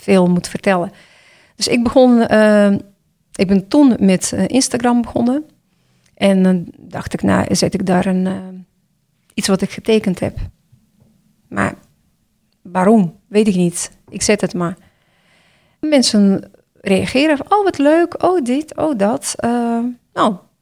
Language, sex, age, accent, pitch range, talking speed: Dutch, female, 40-59, Dutch, 185-235 Hz, 140 wpm